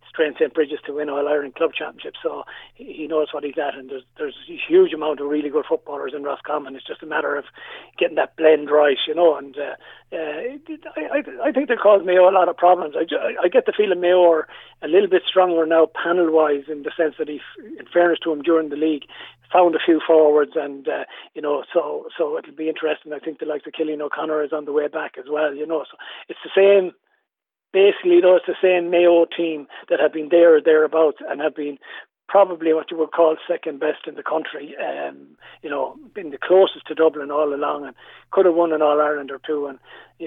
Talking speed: 235 wpm